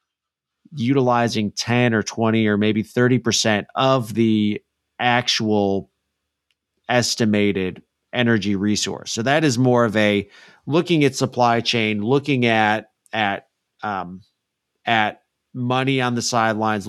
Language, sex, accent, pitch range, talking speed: English, male, American, 105-130 Hz, 115 wpm